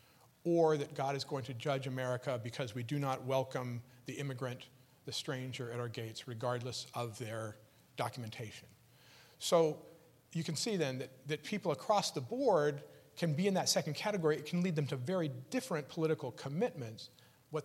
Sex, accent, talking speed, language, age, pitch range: male, American, 175 wpm, English, 40-59, 125-155 Hz